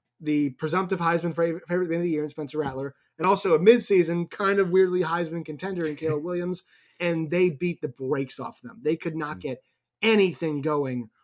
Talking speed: 200 wpm